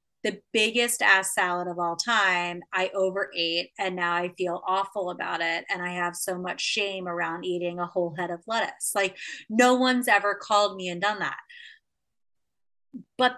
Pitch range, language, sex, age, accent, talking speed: 180-220 Hz, English, female, 20-39, American, 175 wpm